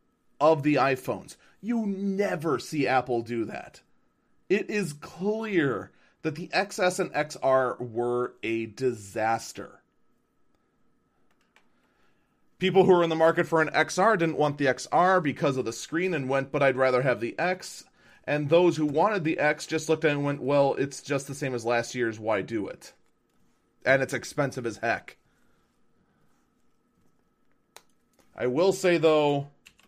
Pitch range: 130-185 Hz